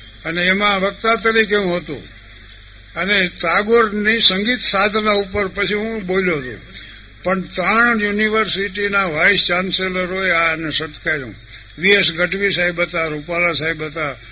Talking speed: 120 wpm